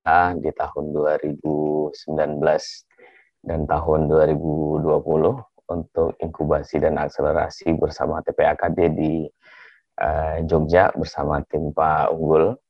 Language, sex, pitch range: Indonesian, male, 80-95 Hz